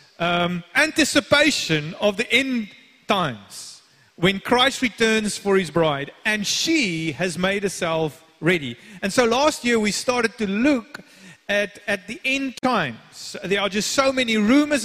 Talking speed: 150 wpm